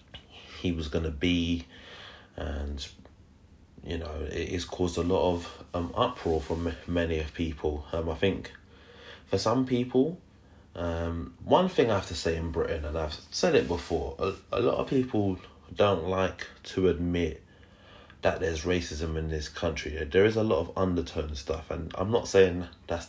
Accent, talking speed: British, 170 wpm